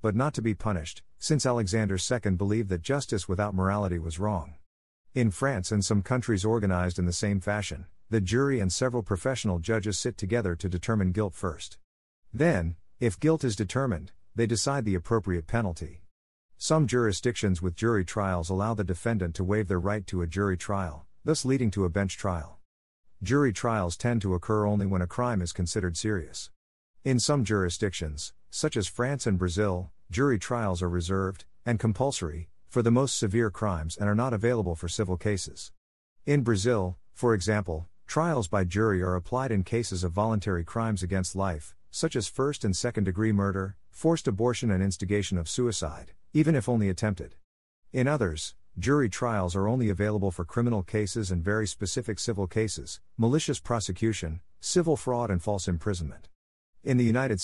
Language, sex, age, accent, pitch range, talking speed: English, male, 50-69, American, 90-115 Hz, 170 wpm